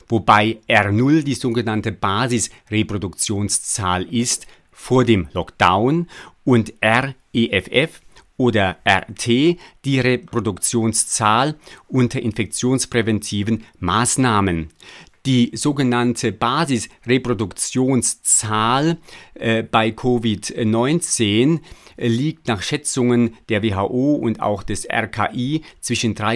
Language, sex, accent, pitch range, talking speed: German, male, German, 110-130 Hz, 75 wpm